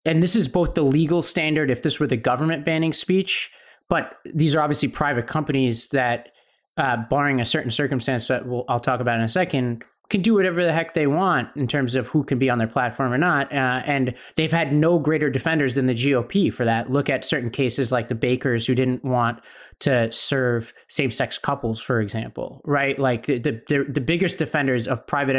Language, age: English, 30-49